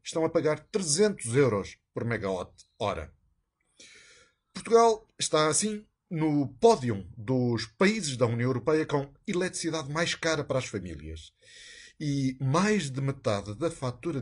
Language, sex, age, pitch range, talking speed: Portuguese, male, 50-69, 115-170 Hz, 125 wpm